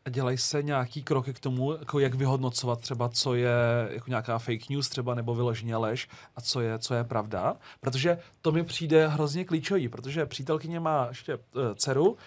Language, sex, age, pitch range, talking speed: Czech, male, 40-59, 135-155 Hz, 185 wpm